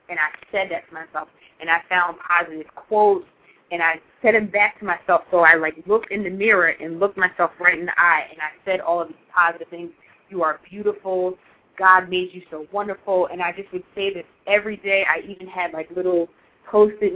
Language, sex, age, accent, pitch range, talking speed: English, female, 20-39, American, 170-195 Hz, 215 wpm